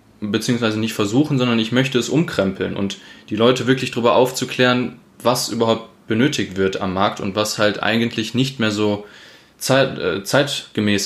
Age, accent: 20-39, German